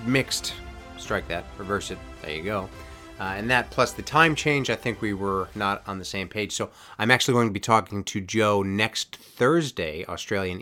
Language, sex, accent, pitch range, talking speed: English, male, American, 90-115 Hz, 205 wpm